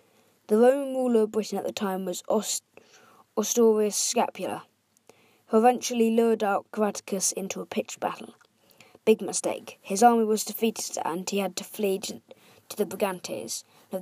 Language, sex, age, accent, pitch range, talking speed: English, female, 20-39, British, 185-225 Hz, 155 wpm